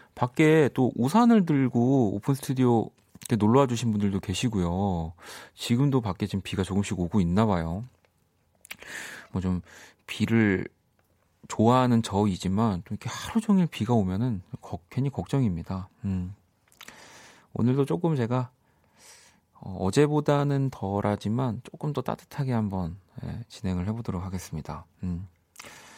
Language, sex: Korean, male